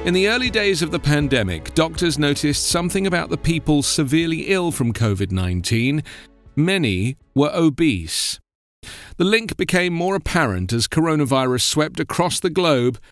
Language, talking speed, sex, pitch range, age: English, 140 wpm, male, 110-160 Hz, 40-59